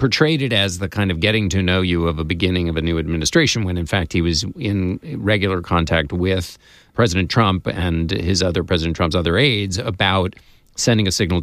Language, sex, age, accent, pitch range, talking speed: English, male, 40-59, American, 85-105 Hz, 205 wpm